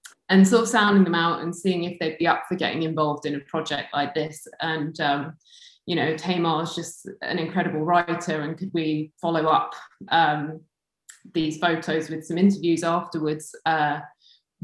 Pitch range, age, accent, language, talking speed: 160-190 Hz, 20-39, British, English, 175 wpm